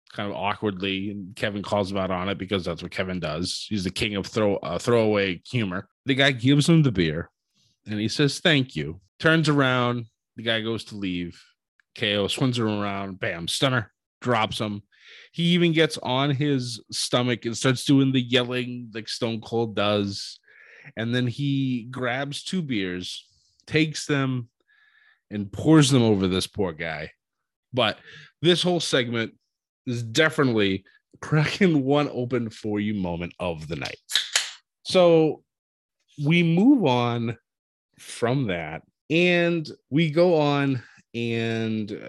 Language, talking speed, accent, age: English, 150 wpm, American, 20-39